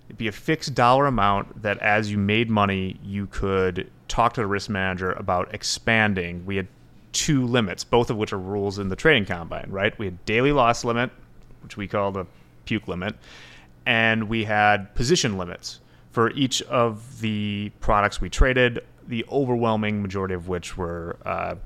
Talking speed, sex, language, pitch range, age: 175 wpm, male, English, 95-120 Hz, 30-49